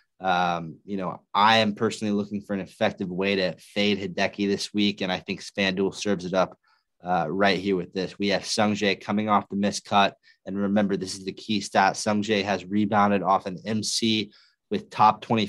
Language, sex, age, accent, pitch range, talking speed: English, male, 20-39, American, 95-105 Hz, 200 wpm